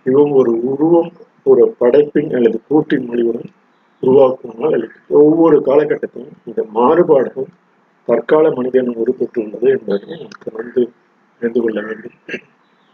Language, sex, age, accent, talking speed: Tamil, male, 50-69, native, 85 wpm